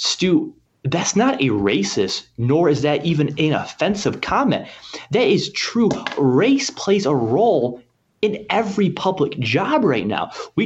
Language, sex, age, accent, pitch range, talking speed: English, male, 30-49, American, 120-190 Hz, 145 wpm